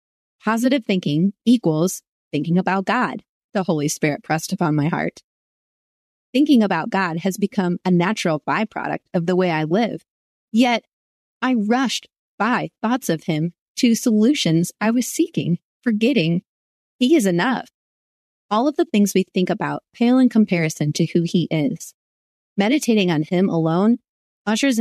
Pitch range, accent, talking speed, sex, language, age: 170-225 Hz, American, 150 wpm, female, English, 30-49